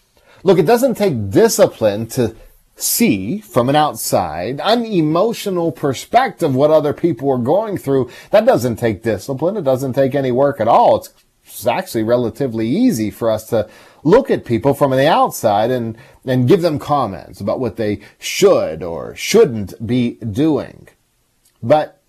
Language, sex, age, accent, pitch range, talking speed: English, male, 40-59, American, 115-170 Hz, 150 wpm